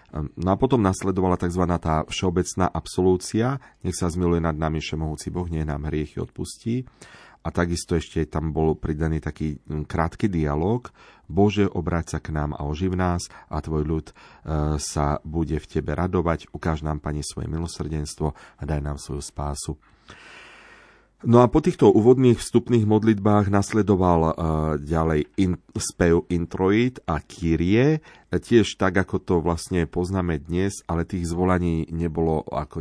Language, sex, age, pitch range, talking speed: Slovak, male, 40-59, 75-95 Hz, 145 wpm